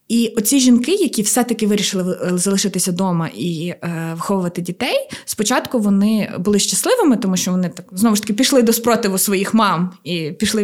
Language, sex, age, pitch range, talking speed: Ukrainian, female, 20-39, 185-225 Hz, 170 wpm